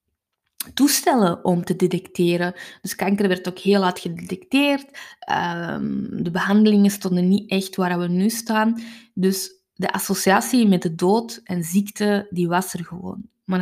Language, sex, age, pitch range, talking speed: Dutch, female, 20-39, 185-225 Hz, 150 wpm